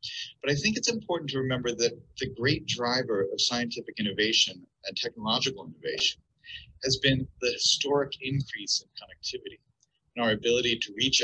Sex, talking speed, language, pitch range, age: male, 155 wpm, Russian, 110-165 Hz, 30-49